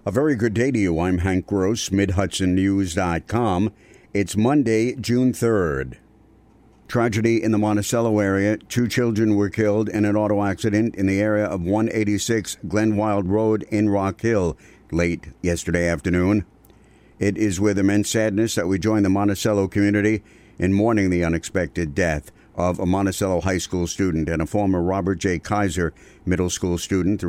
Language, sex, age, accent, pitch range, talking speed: English, male, 60-79, American, 90-105 Hz, 160 wpm